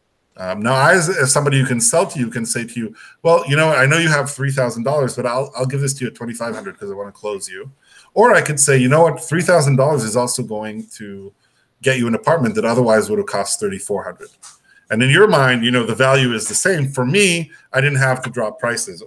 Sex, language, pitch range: male, English, 110-140 Hz